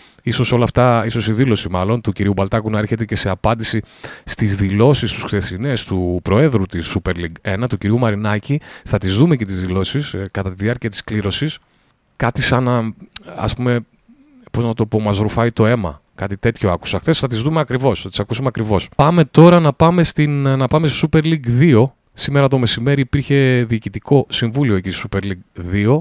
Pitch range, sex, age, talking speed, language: 100-135 Hz, male, 30-49, 190 wpm, Greek